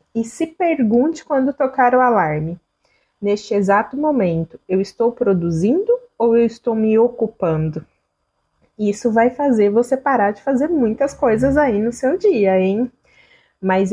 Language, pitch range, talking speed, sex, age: Portuguese, 205-265 Hz, 140 wpm, female, 20-39